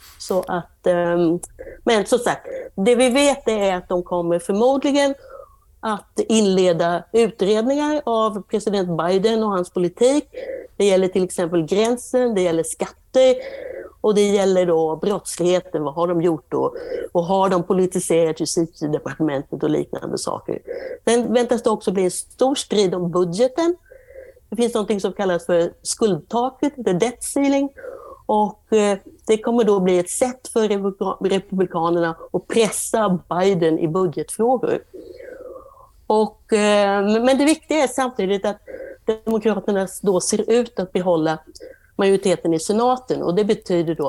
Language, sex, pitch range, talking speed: English, female, 180-250 Hz, 135 wpm